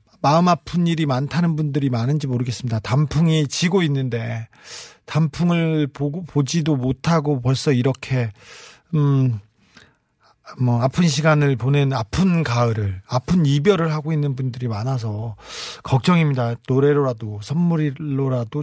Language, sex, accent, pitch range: Korean, male, native, 130-180 Hz